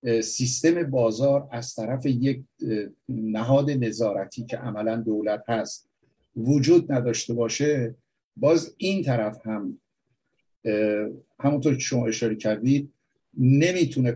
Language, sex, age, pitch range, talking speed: Persian, male, 50-69, 115-135 Hz, 100 wpm